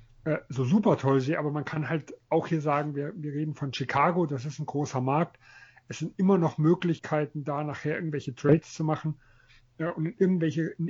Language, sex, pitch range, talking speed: German, male, 140-160 Hz, 205 wpm